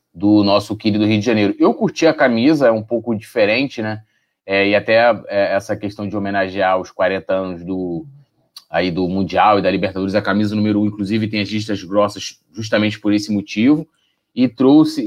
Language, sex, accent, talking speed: Portuguese, male, Brazilian, 200 wpm